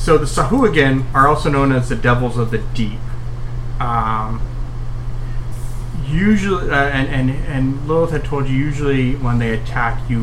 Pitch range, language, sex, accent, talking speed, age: 115-130 Hz, English, male, American, 165 wpm, 30-49